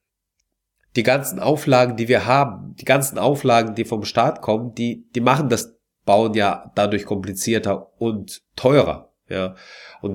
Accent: German